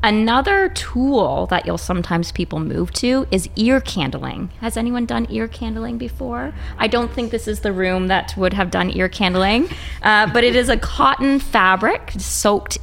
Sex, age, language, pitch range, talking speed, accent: female, 20-39, English, 175-220 Hz, 180 wpm, American